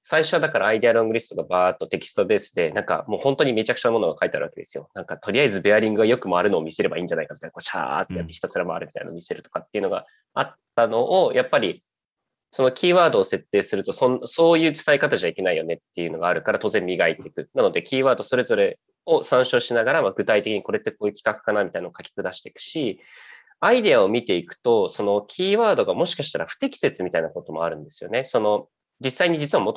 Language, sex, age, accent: English, male, 20-39, Japanese